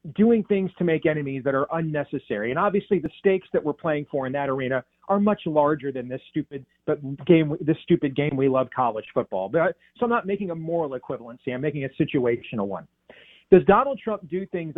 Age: 40-59